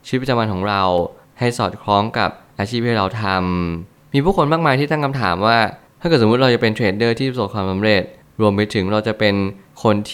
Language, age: Thai, 20-39